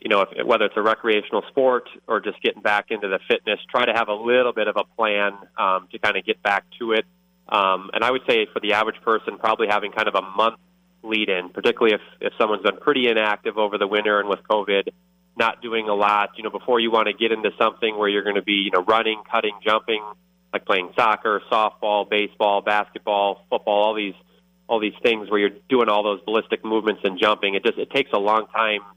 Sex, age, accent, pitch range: male, 30-49, American, 100-115 Hz